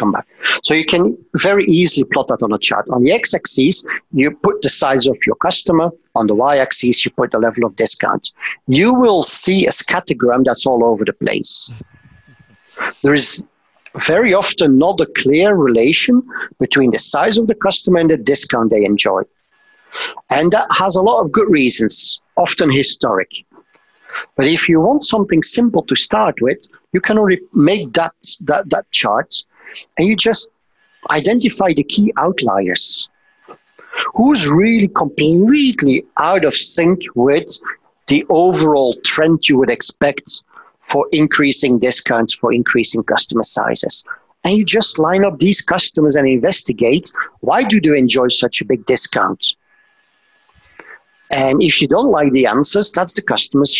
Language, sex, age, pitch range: Dutch, male, 50-69, 140-205 Hz